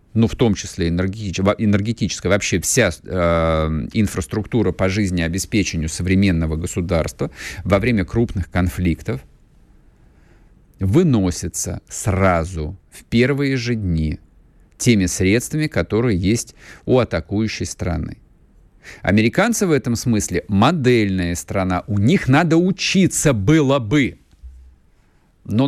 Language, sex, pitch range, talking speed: Russian, male, 85-115 Hz, 100 wpm